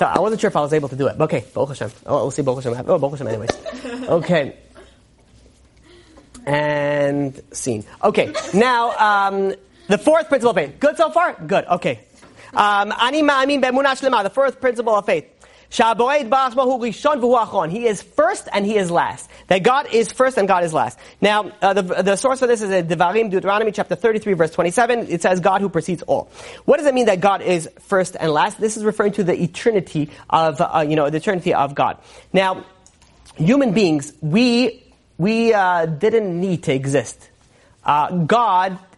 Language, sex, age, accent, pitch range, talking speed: English, male, 30-49, American, 155-225 Hz, 175 wpm